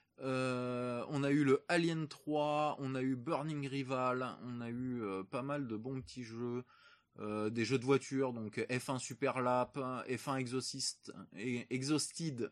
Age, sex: 20-39, male